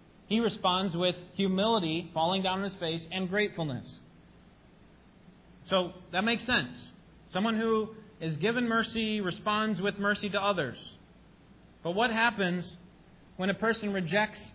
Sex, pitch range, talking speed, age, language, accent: male, 140-190 Hz, 130 wpm, 30-49, English, American